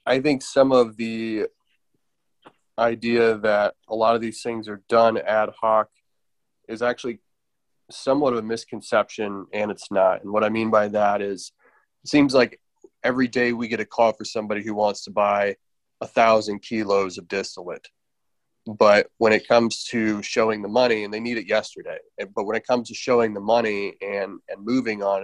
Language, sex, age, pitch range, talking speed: English, male, 30-49, 100-115 Hz, 185 wpm